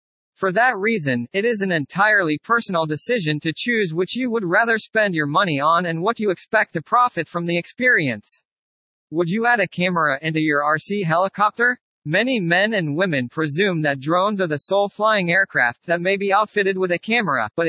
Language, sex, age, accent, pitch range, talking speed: English, male, 40-59, American, 160-215 Hz, 195 wpm